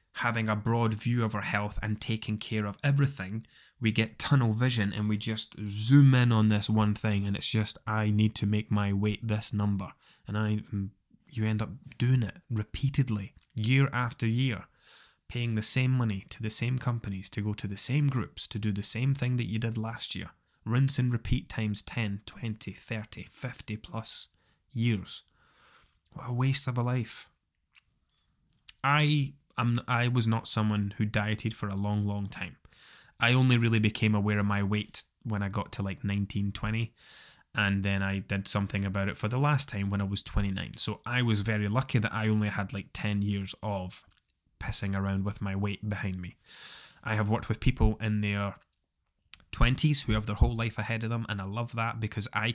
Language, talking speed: English, 195 wpm